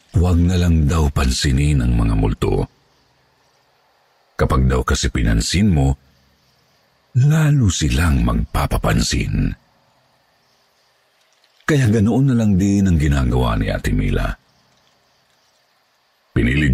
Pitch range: 75-100 Hz